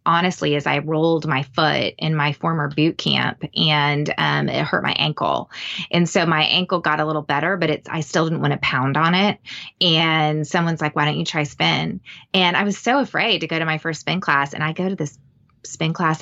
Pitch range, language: 155-200 Hz, English